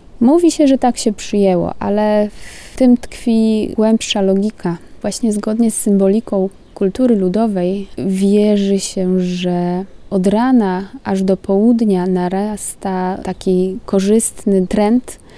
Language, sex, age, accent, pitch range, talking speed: Polish, female, 20-39, native, 185-210 Hz, 115 wpm